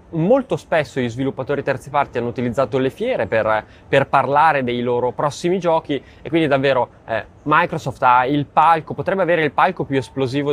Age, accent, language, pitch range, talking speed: 20-39, native, Italian, 125-160 Hz, 175 wpm